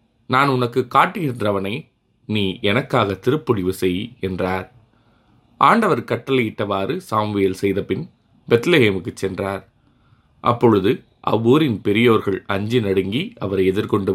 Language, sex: Tamil, male